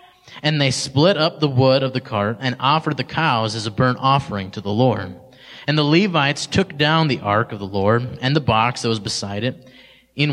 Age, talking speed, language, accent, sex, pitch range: 20-39, 220 wpm, English, American, male, 110-140 Hz